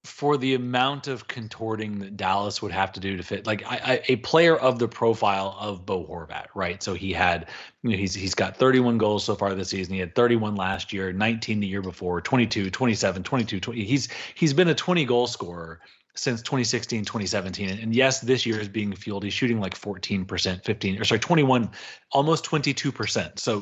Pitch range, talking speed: 100-130 Hz, 195 wpm